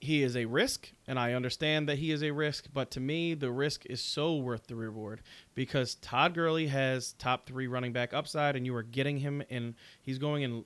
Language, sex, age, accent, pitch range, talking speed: English, male, 30-49, American, 135-195 Hz, 225 wpm